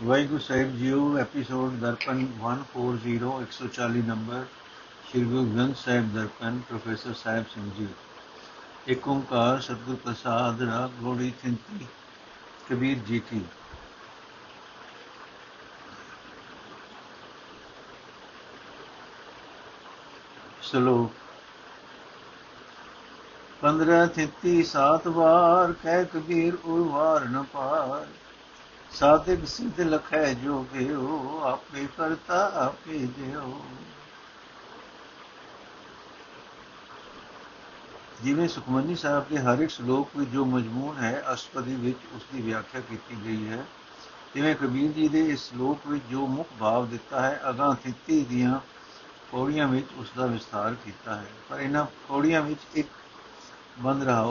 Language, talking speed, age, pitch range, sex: Punjabi, 95 wpm, 60-79, 120-145 Hz, male